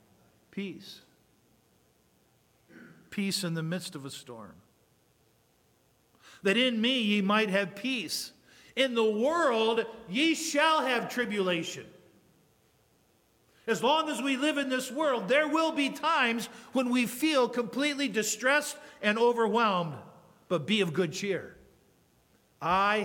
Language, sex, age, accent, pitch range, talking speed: English, male, 50-69, American, 160-215 Hz, 120 wpm